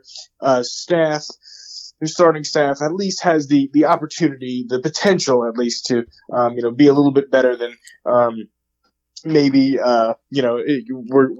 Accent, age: American, 20-39